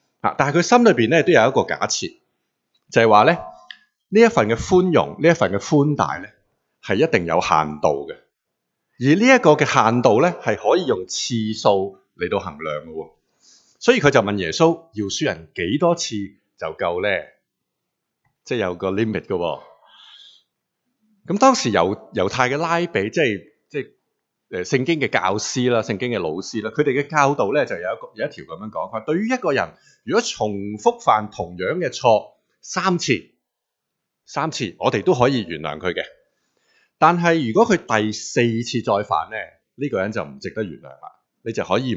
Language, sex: Chinese, male